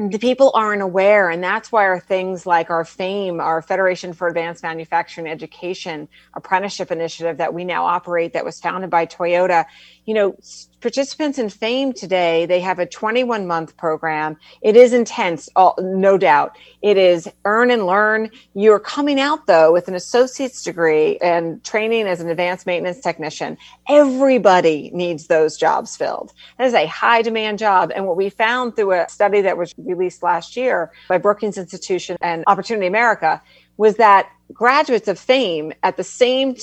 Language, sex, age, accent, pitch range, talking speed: English, female, 40-59, American, 170-220 Hz, 170 wpm